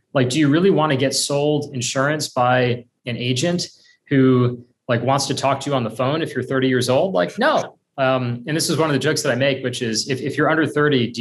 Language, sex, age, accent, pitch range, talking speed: English, male, 30-49, American, 120-150 Hz, 255 wpm